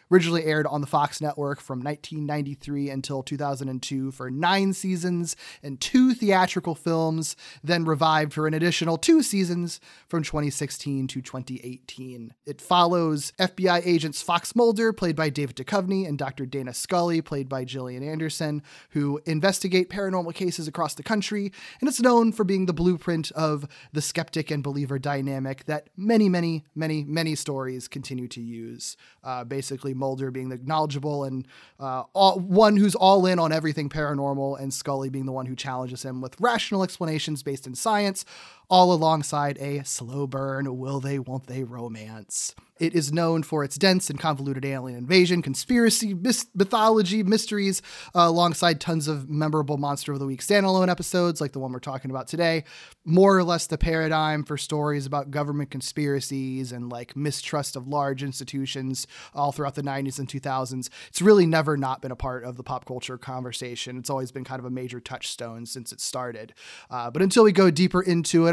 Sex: male